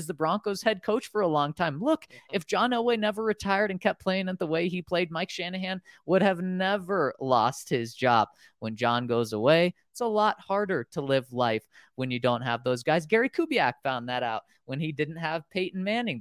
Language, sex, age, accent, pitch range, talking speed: English, male, 20-39, American, 120-185 Hz, 215 wpm